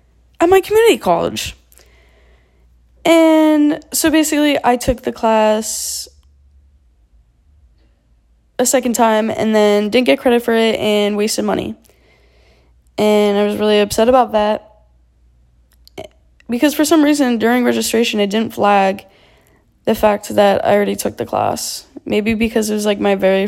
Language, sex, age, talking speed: English, female, 10-29, 140 wpm